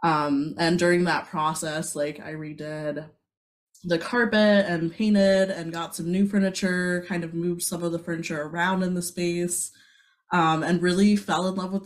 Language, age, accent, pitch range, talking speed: English, 20-39, American, 160-190 Hz, 175 wpm